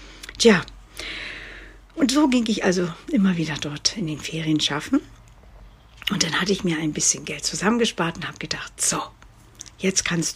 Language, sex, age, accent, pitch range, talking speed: German, female, 60-79, German, 160-205 Hz, 160 wpm